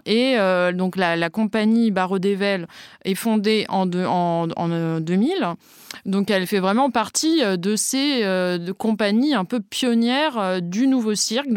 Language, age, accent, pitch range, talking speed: French, 20-39, French, 190-230 Hz, 165 wpm